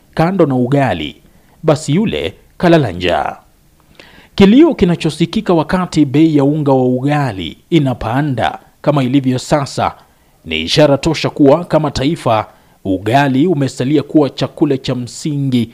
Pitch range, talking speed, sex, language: 130-155 Hz, 115 wpm, male, Swahili